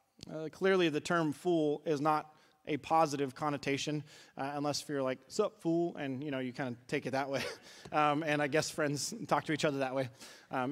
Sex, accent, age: male, American, 30-49